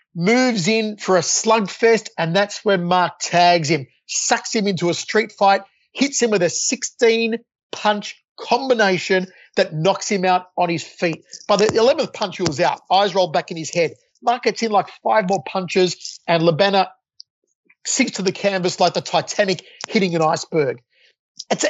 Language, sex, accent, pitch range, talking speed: English, male, Australian, 180-225 Hz, 175 wpm